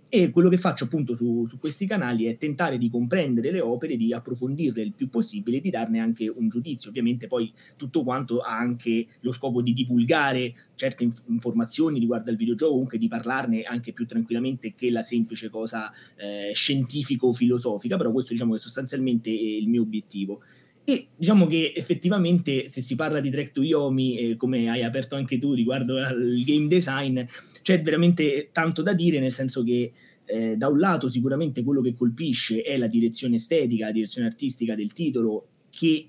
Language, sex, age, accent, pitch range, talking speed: Italian, male, 20-39, native, 120-150 Hz, 175 wpm